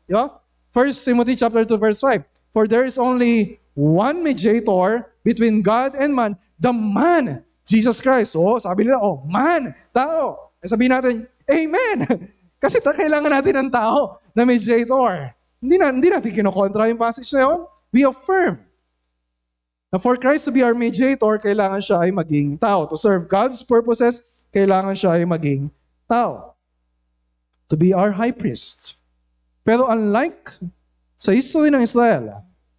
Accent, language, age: native, Filipino, 20-39